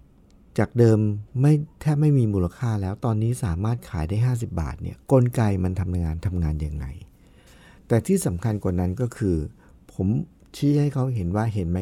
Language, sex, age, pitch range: Thai, male, 60-79, 90-130 Hz